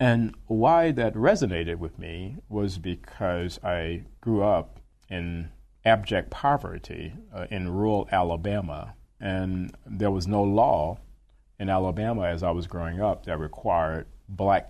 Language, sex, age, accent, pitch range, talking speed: English, male, 40-59, American, 85-105 Hz, 135 wpm